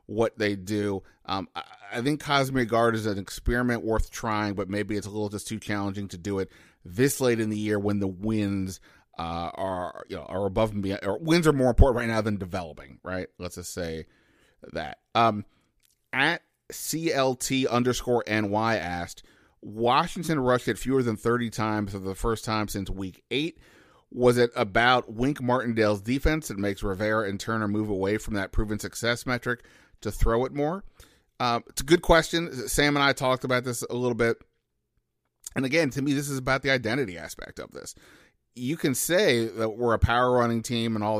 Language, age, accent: English, 30-49, American